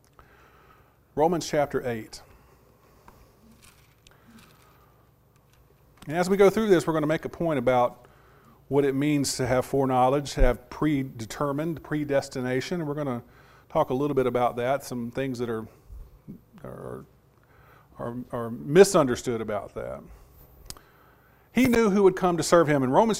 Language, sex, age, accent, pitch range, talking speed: English, male, 40-59, American, 130-165 Hz, 145 wpm